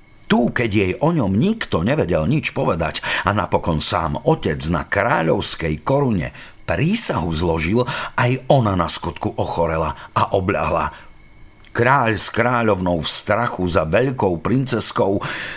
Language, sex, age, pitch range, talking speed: Slovak, male, 50-69, 90-125 Hz, 125 wpm